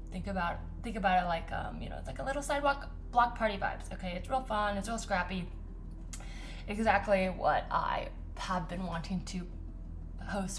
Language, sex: English, female